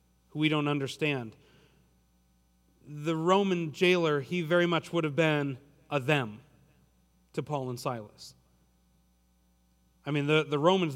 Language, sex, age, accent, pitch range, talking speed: English, male, 40-59, American, 115-165 Hz, 125 wpm